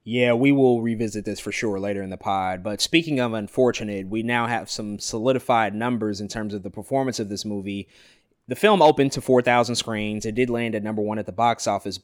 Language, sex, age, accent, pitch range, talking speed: English, male, 20-39, American, 105-135 Hz, 225 wpm